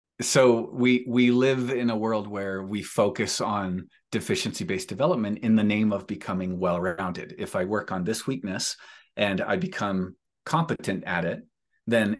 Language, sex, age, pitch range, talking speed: English, male, 40-59, 95-115 Hz, 155 wpm